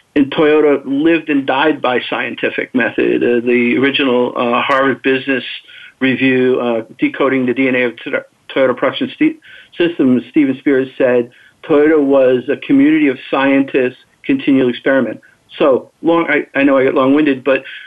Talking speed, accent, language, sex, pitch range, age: 150 wpm, American, English, male, 140-205 Hz, 50-69